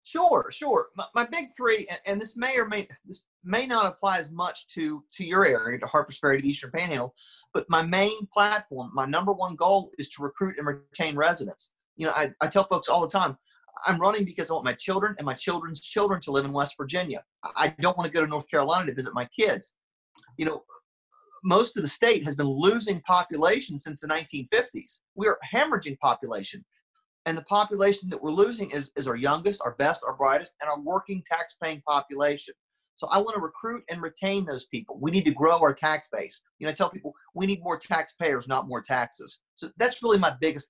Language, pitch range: English, 145-195 Hz